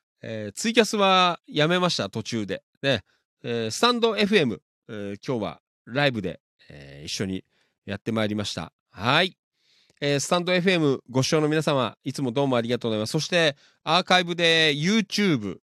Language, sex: Japanese, male